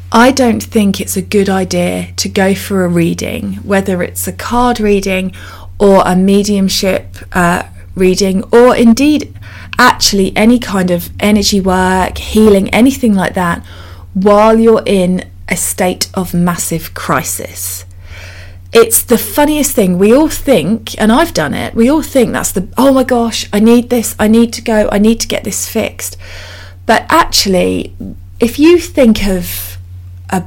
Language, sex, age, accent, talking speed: English, female, 30-49, British, 160 wpm